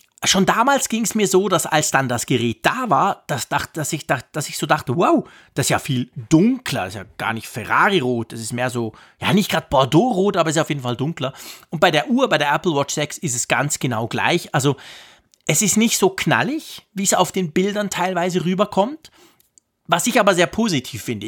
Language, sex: German, male